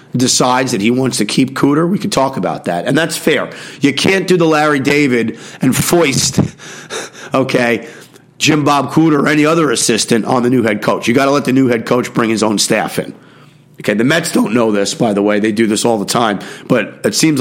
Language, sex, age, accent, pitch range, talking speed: English, male, 40-59, American, 115-155 Hz, 230 wpm